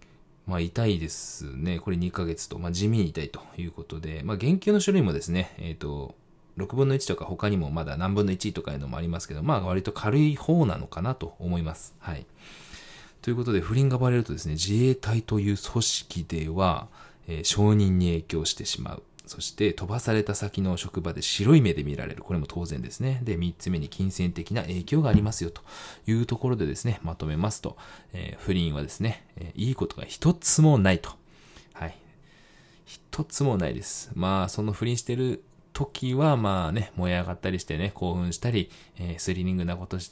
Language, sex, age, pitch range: Japanese, male, 20-39, 85-120 Hz